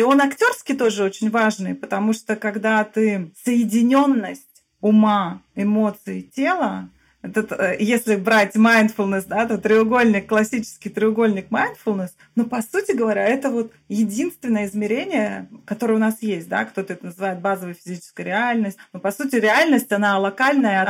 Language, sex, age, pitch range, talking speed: Russian, female, 30-49, 205-255 Hz, 140 wpm